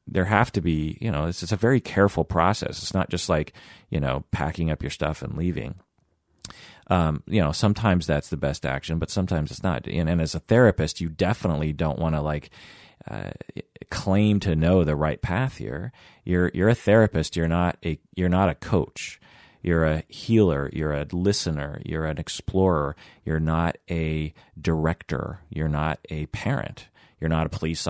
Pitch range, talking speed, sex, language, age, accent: 75-95 Hz, 185 wpm, male, English, 30-49, American